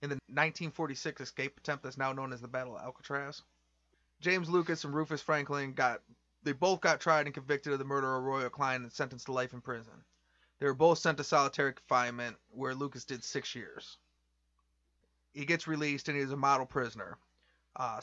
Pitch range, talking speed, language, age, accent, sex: 130-155 Hz, 195 wpm, English, 30-49, American, male